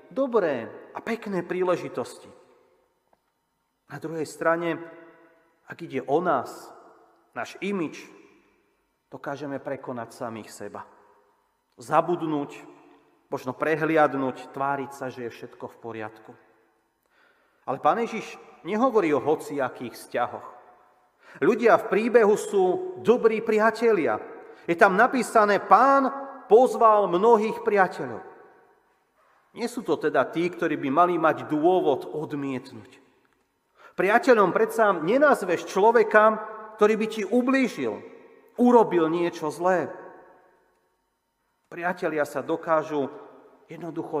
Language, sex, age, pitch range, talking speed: Slovak, male, 40-59, 150-220 Hz, 100 wpm